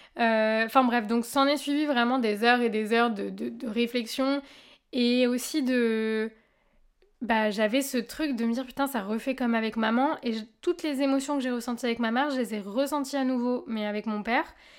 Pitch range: 215-265 Hz